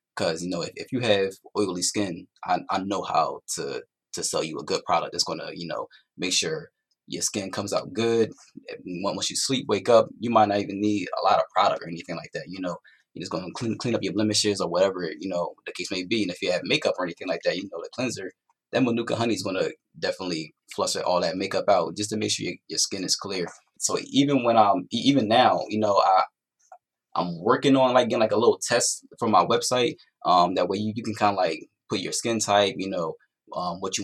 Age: 20-39